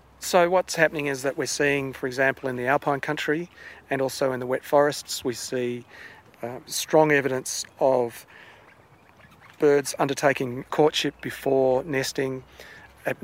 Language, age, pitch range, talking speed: English, 40-59, 125-145 Hz, 140 wpm